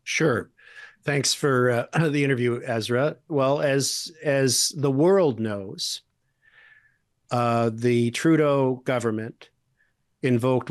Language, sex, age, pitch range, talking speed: English, male, 50-69, 120-145 Hz, 100 wpm